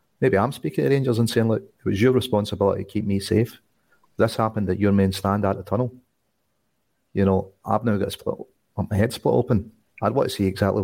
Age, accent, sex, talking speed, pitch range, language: 40-59, British, male, 225 wpm, 100-125 Hz, English